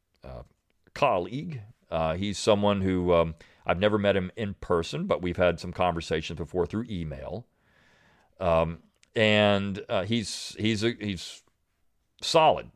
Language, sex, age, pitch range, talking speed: English, male, 40-59, 85-105 Hz, 135 wpm